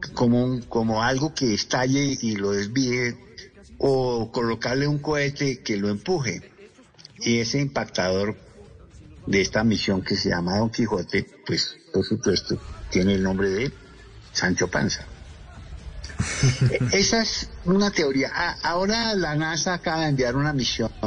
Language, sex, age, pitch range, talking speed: Spanish, male, 60-79, 105-155 Hz, 135 wpm